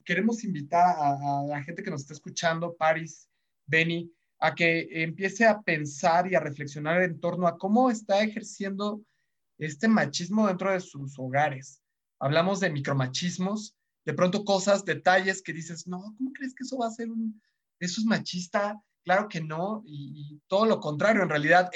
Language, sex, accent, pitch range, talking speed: Spanish, male, Mexican, 160-215 Hz, 175 wpm